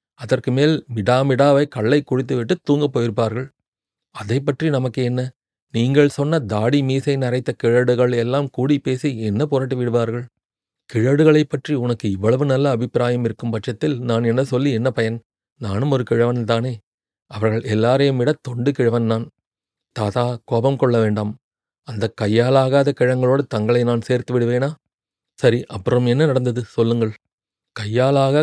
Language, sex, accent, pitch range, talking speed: Tamil, male, native, 115-135 Hz, 130 wpm